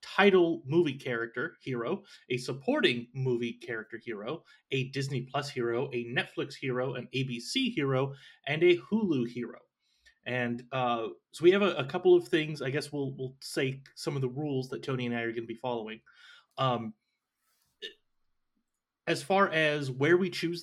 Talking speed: 170 wpm